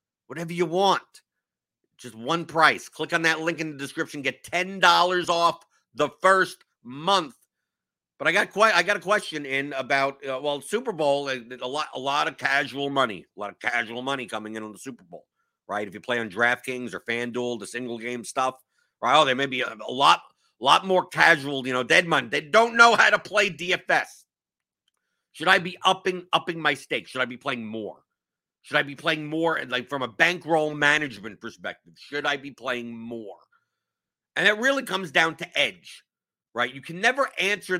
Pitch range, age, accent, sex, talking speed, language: 130-180 Hz, 50-69, American, male, 200 wpm, English